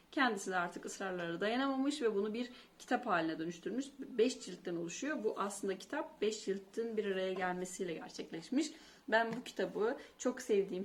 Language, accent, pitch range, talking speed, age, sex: Turkish, native, 195-255 Hz, 155 wpm, 30-49, female